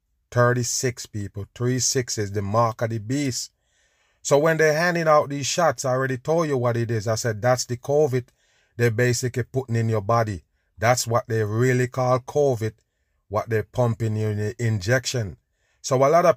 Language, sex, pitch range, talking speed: English, male, 115-135 Hz, 185 wpm